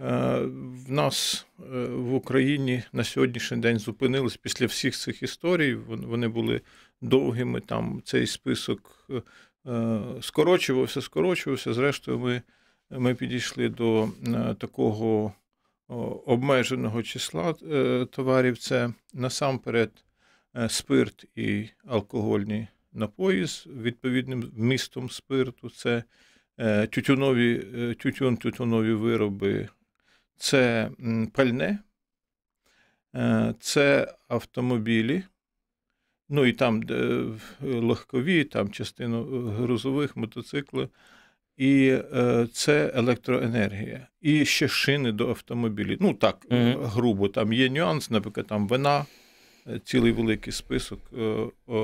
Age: 50-69